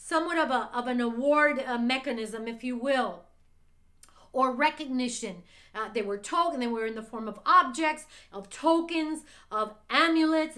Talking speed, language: 160 wpm, English